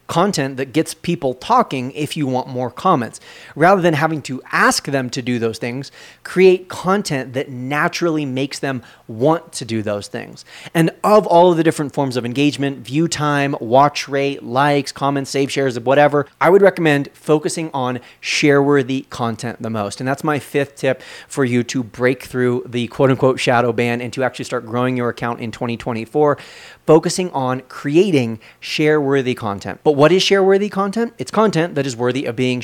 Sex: male